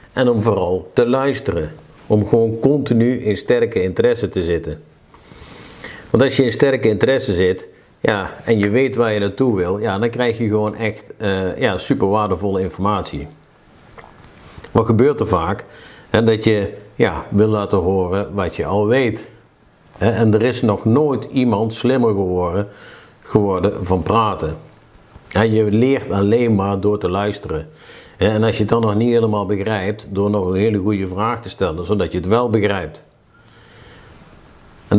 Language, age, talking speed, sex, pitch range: Dutch, 50-69, 160 wpm, male, 95-115 Hz